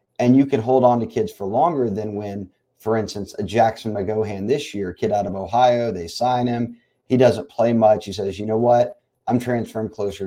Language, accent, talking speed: English, American, 215 wpm